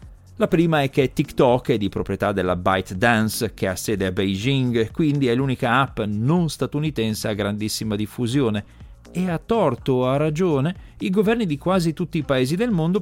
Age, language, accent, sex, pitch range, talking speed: 40-59, Italian, native, male, 95-155 Hz, 180 wpm